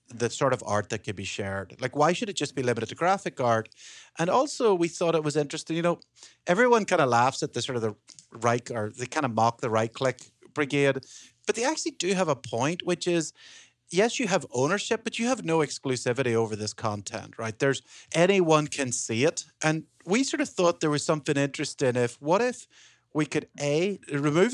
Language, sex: English, male